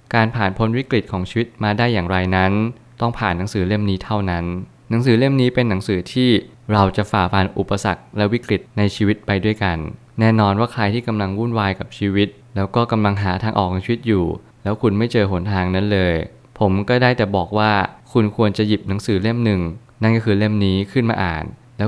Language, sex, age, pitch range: Thai, male, 20-39, 95-115 Hz